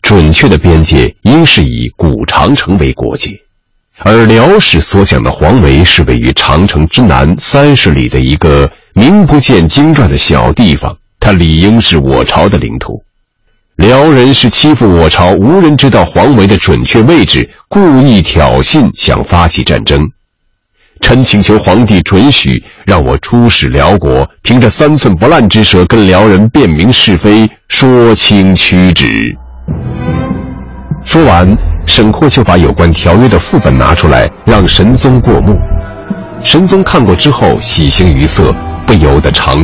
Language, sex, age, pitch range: Chinese, male, 50-69, 75-110 Hz